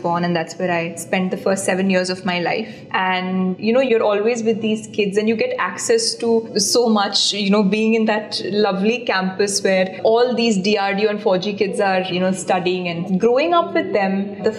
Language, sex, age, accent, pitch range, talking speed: English, female, 20-39, Indian, 185-225 Hz, 215 wpm